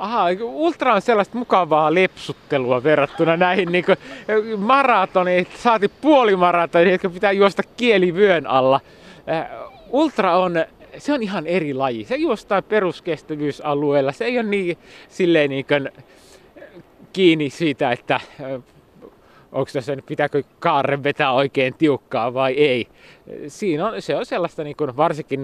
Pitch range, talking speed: 130-180 Hz, 125 wpm